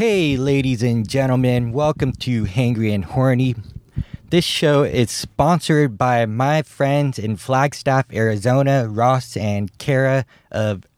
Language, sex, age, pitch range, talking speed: English, male, 20-39, 115-145 Hz, 125 wpm